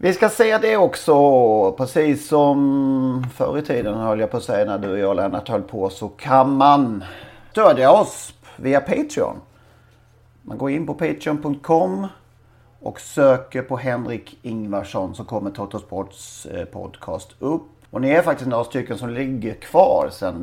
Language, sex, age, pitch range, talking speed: Swedish, male, 40-59, 105-145 Hz, 160 wpm